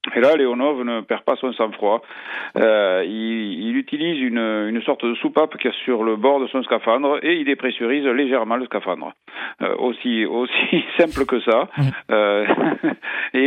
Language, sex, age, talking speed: French, male, 50-69, 170 wpm